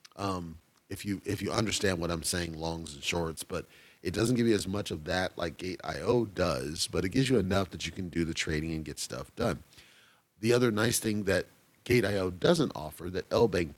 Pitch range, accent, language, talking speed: 90-110 Hz, American, English, 225 wpm